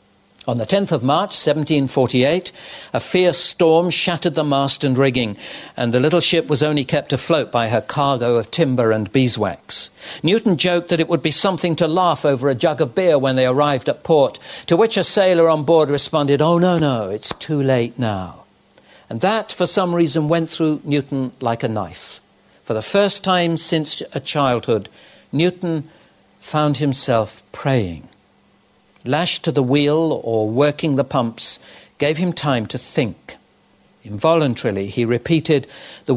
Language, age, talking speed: English, 60-79, 170 wpm